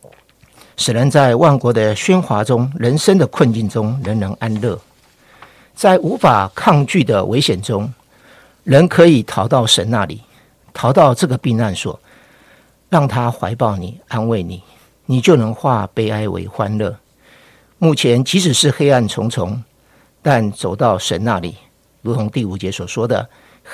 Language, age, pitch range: Chinese, 50-69, 105-140 Hz